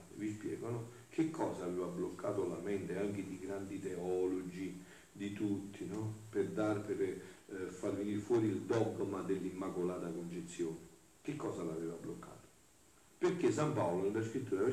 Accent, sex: native, male